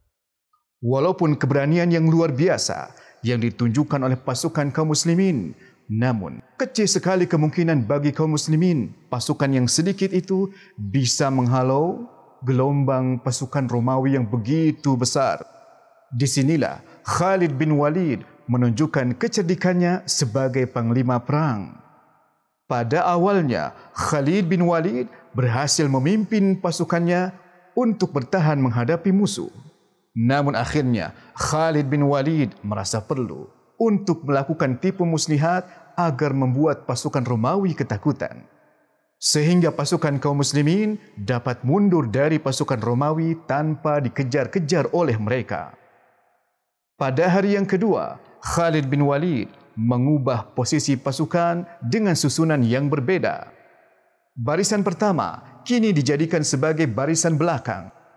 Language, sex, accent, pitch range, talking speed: Indonesian, male, Malaysian, 130-175 Hz, 105 wpm